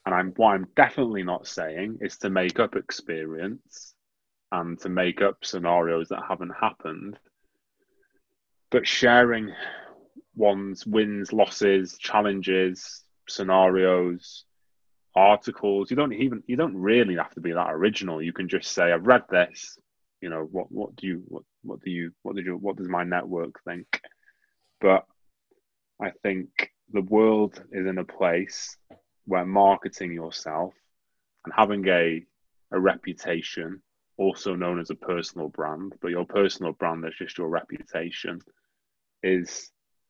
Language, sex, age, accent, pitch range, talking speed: English, male, 20-39, British, 85-100 Hz, 145 wpm